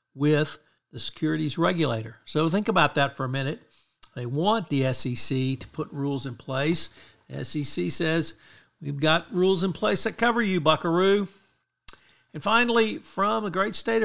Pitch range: 135-175 Hz